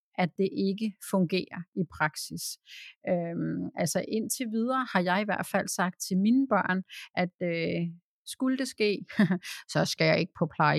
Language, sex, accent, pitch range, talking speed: Danish, female, native, 180-215 Hz, 165 wpm